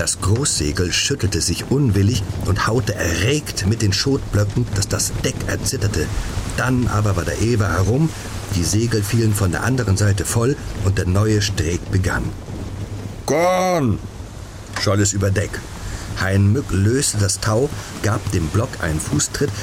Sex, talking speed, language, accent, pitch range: male, 150 wpm, German, German, 90-105 Hz